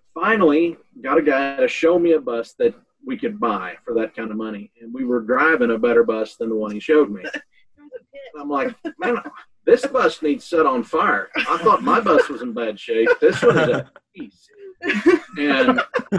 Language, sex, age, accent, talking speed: English, male, 40-59, American, 200 wpm